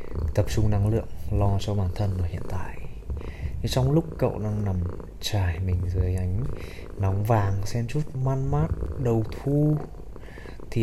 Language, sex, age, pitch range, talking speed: Vietnamese, male, 20-39, 90-115 Hz, 165 wpm